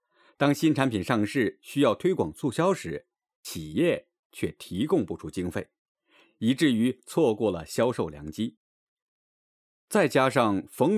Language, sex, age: Chinese, male, 50-69